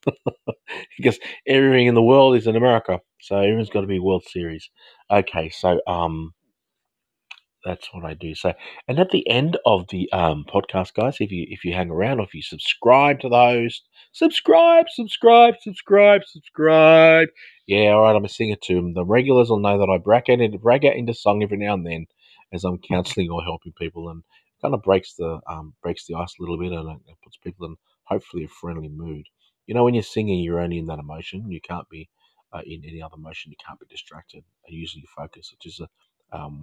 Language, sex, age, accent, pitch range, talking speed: English, male, 30-49, Australian, 80-110 Hz, 210 wpm